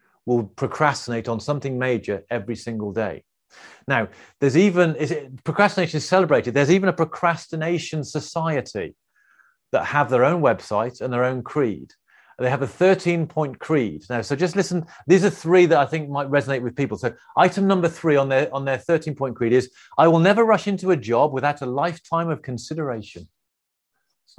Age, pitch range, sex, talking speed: 40-59, 125-170 Hz, male, 175 wpm